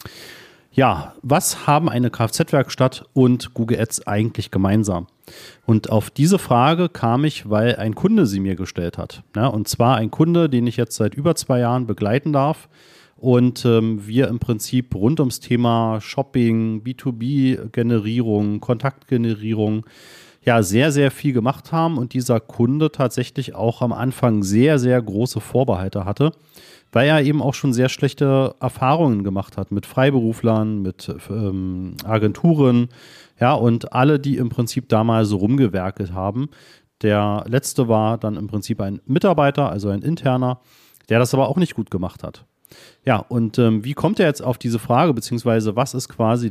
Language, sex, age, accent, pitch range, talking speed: German, male, 40-59, German, 110-140 Hz, 155 wpm